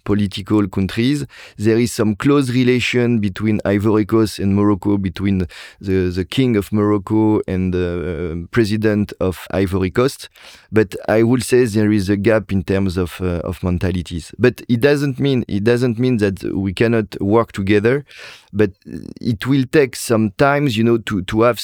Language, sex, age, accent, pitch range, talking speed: English, male, 30-49, French, 95-115 Hz, 170 wpm